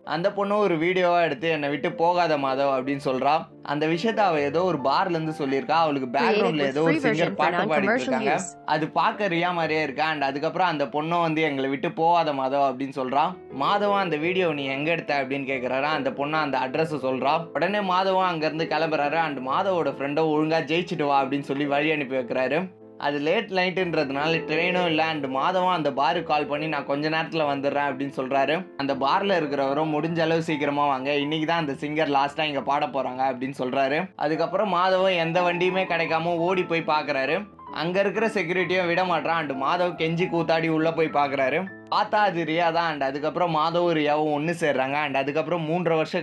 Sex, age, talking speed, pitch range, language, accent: male, 20-39, 170 wpm, 140-170 Hz, Tamil, native